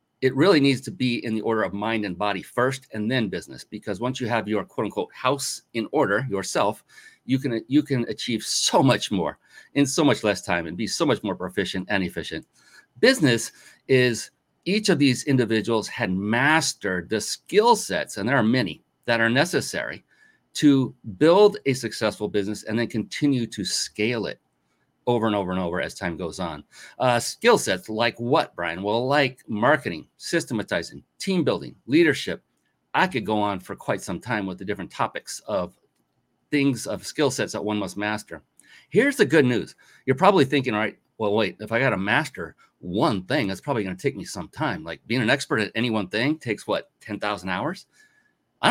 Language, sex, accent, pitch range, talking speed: English, male, American, 105-135 Hz, 195 wpm